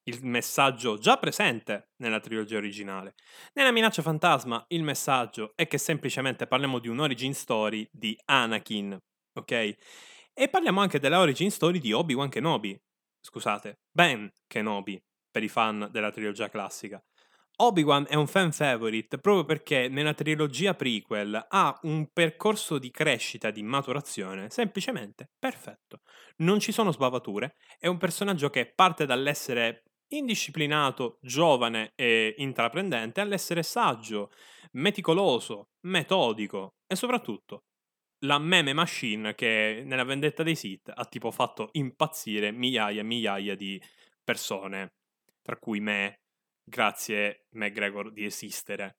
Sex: male